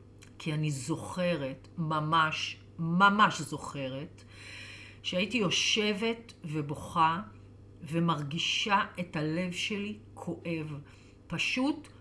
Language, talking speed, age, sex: English, 75 wpm, 40-59, female